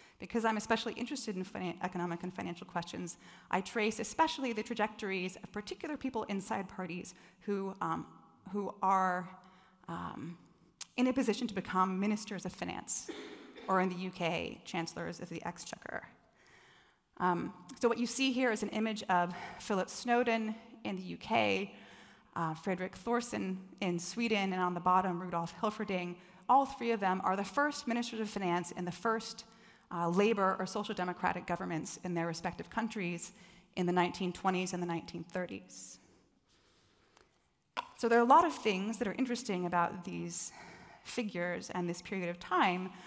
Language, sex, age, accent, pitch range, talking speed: Dutch, female, 30-49, American, 180-230 Hz, 160 wpm